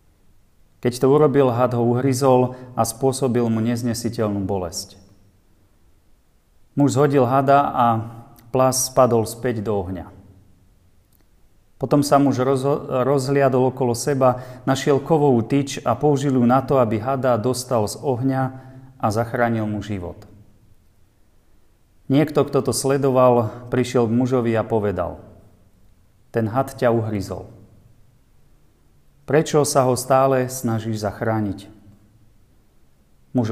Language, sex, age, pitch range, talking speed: Slovak, male, 40-59, 105-135 Hz, 115 wpm